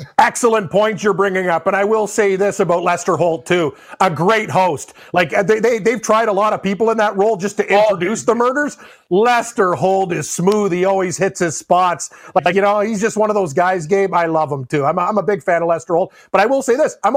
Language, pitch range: English, 185-240 Hz